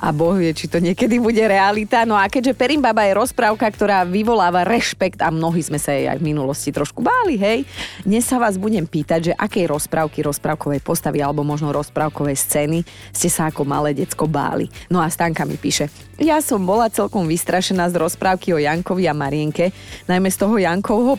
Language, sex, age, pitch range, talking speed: Slovak, female, 30-49, 170-215 Hz, 195 wpm